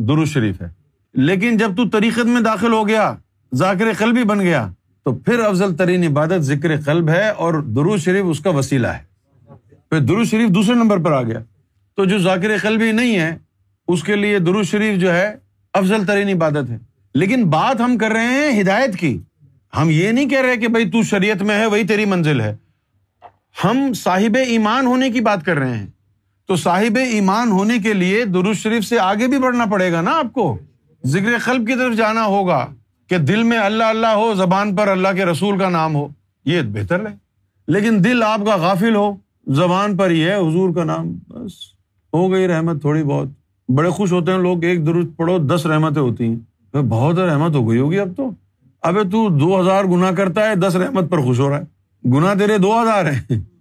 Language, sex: Urdu, male